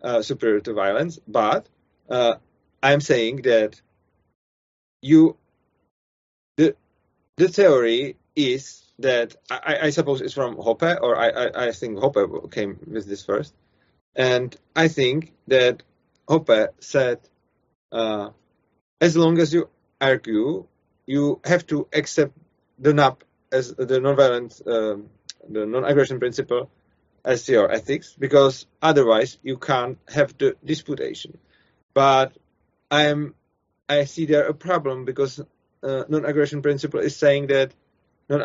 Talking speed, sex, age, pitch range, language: 130 wpm, male, 30-49, 115-155 Hz, Czech